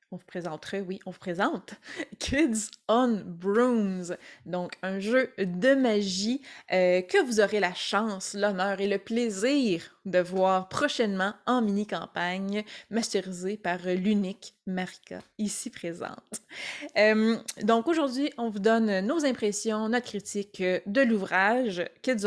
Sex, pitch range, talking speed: female, 190-235 Hz, 135 wpm